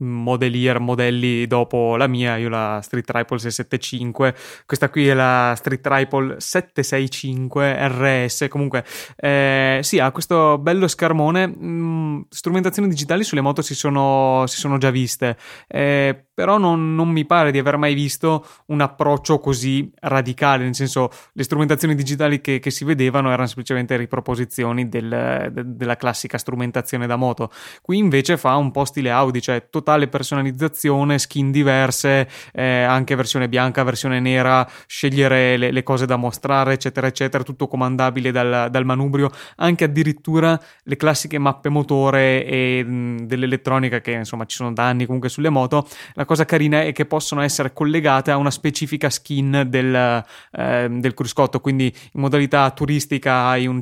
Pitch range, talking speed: 125-145 Hz, 155 wpm